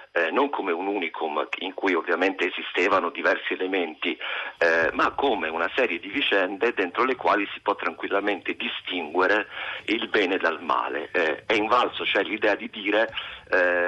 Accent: native